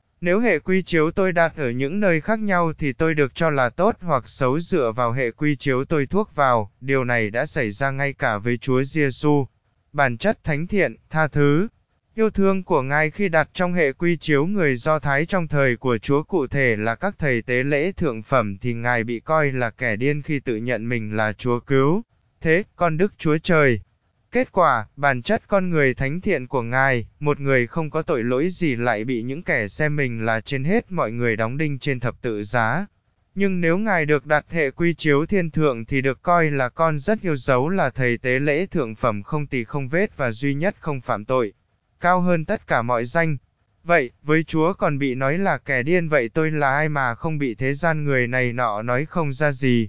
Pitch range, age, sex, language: 125-165 Hz, 20-39, male, Vietnamese